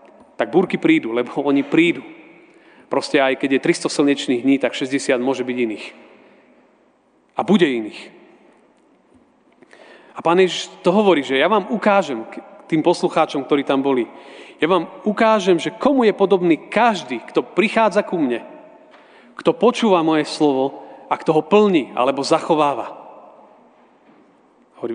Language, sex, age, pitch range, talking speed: Slovak, male, 40-59, 140-190 Hz, 140 wpm